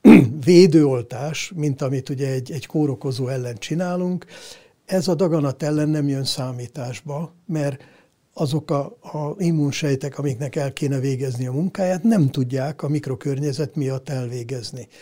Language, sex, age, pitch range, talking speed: Hungarian, male, 60-79, 135-165 Hz, 130 wpm